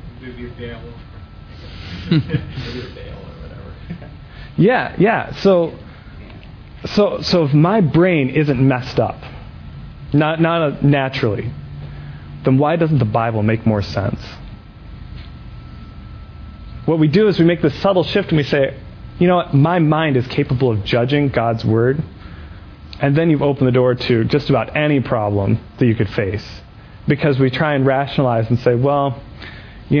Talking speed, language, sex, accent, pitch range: 140 wpm, English, male, American, 110-150 Hz